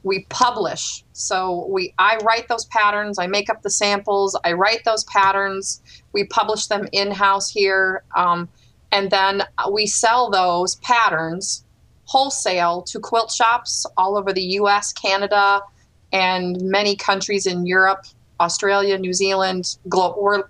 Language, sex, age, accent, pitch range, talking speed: English, female, 30-49, American, 185-215 Hz, 140 wpm